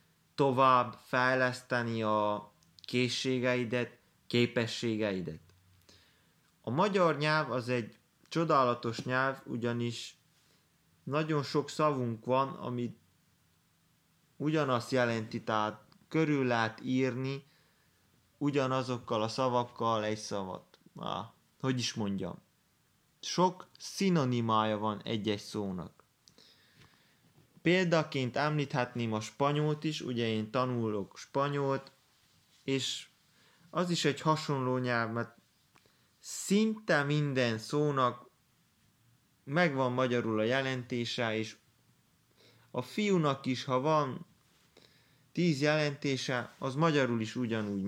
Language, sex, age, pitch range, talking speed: Hungarian, male, 20-39, 115-145 Hz, 90 wpm